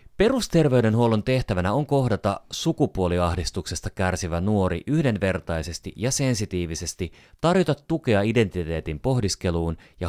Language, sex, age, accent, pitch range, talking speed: Finnish, male, 30-49, native, 85-110 Hz, 90 wpm